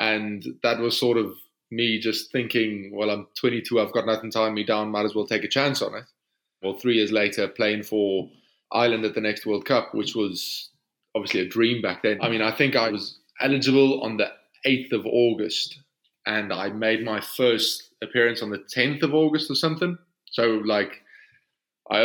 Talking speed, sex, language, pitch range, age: 195 wpm, male, English, 100-115 Hz, 20-39